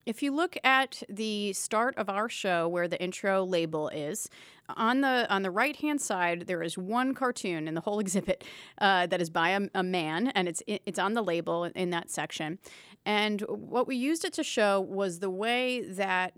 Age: 30-49